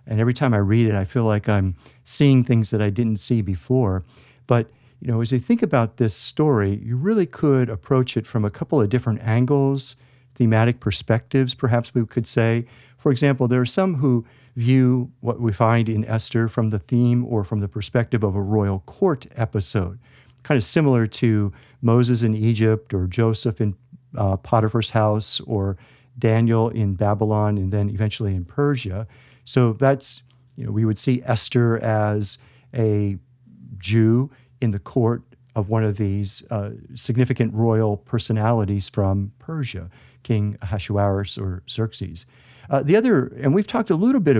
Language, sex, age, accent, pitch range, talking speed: English, male, 50-69, American, 105-130 Hz, 170 wpm